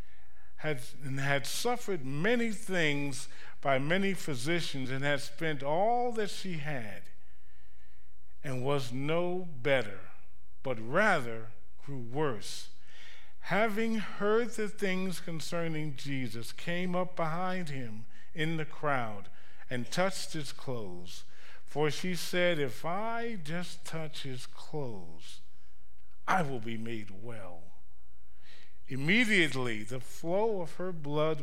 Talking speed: 115 wpm